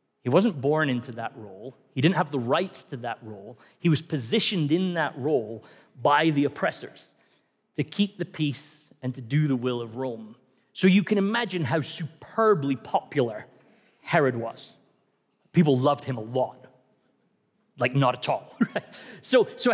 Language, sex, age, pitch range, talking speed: English, male, 30-49, 135-210 Hz, 165 wpm